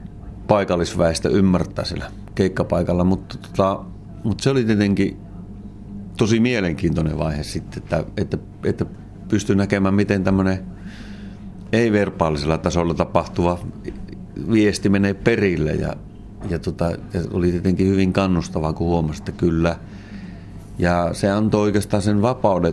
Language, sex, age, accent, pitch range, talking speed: Finnish, male, 30-49, native, 90-100 Hz, 115 wpm